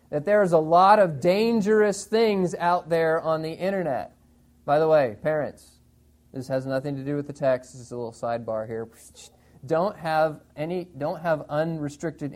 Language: English